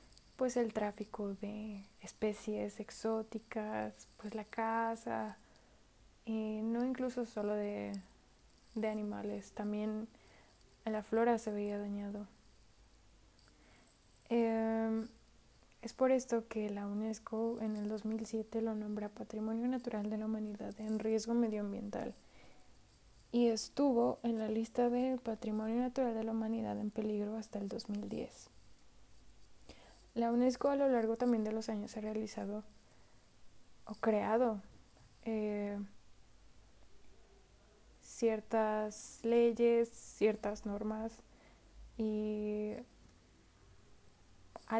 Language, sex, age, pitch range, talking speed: Spanish, female, 20-39, 205-230 Hz, 105 wpm